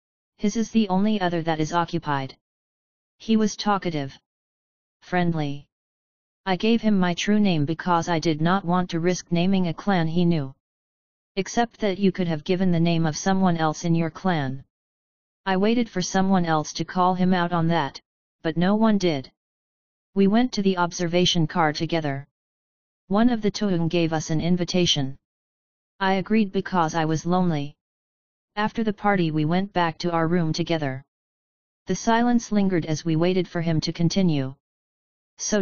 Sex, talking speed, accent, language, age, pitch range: female, 170 wpm, American, English, 30-49, 160-195 Hz